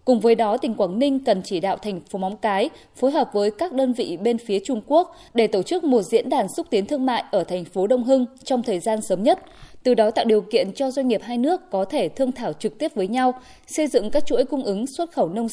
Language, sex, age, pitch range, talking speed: Vietnamese, female, 20-39, 205-270 Hz, 270 wpm